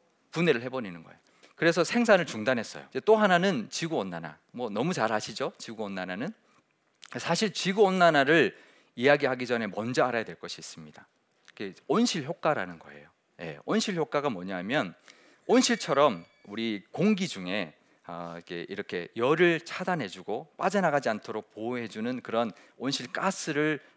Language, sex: Korean, male